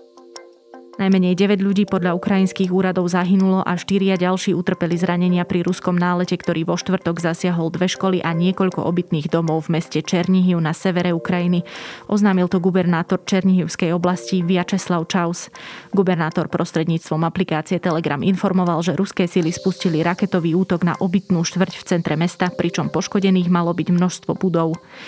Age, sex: 20-39, female